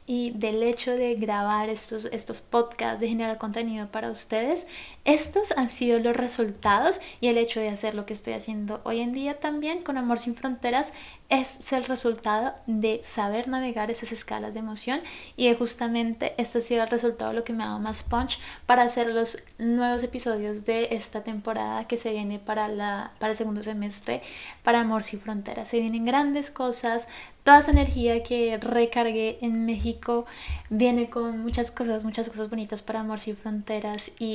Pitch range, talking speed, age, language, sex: 220-240 Hz, 180 wpm, 20-39, Spanish, female